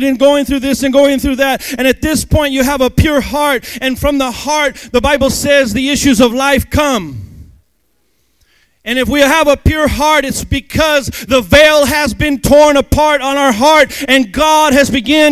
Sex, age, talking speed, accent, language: male, 30-49, 200 wpm, American, English